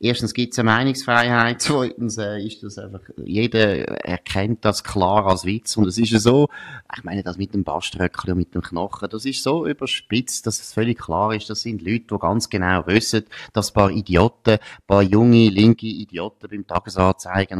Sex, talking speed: male, 195 wpm